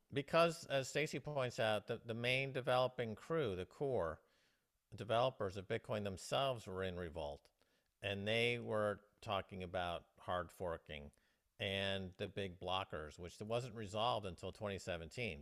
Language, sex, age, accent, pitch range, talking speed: English, male, 50-69, American, 90-110 Hz, 135 wpm